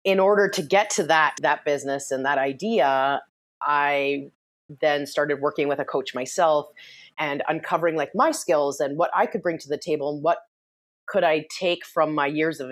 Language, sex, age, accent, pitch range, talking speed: English, female, 30-49, American, 140-165 Hz, 195 wpm